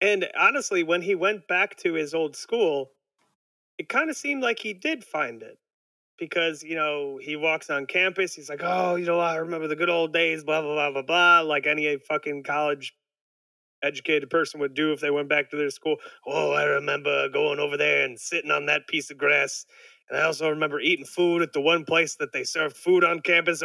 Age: 30-49